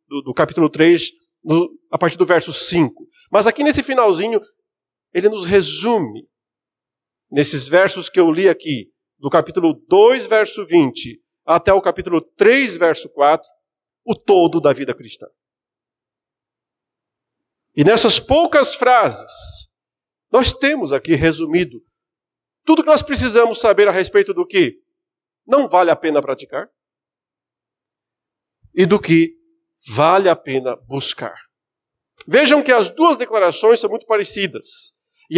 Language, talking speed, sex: Portuguese, 130 wpm, male